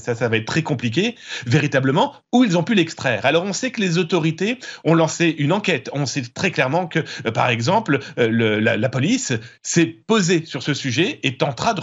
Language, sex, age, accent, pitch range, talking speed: French, male, 40-59, French, 135-185 Hz, 210 wpm